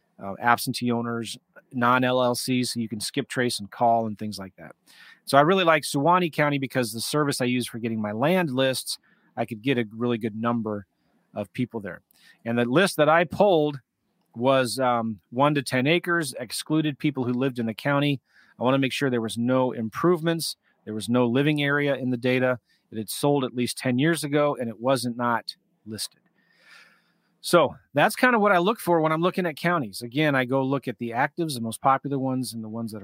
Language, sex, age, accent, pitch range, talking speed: English, male, 30-49, American, 115-155 Hz, 215 wpm